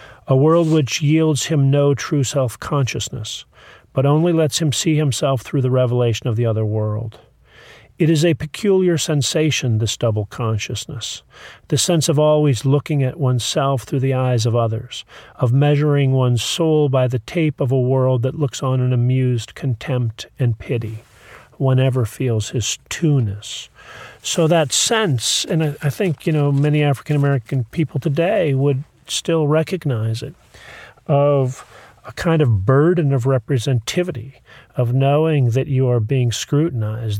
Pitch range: 120-150 Hz